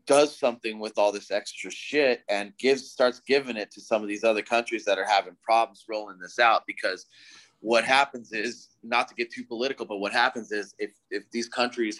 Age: 30-49